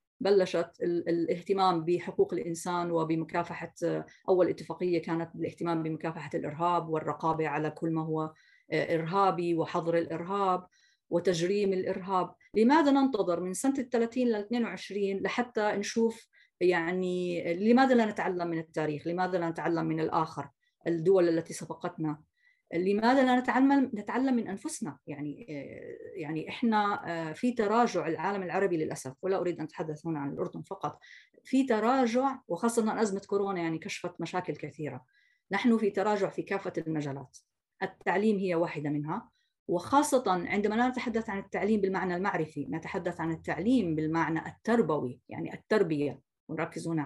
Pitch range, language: 165-220 Hz, Arabic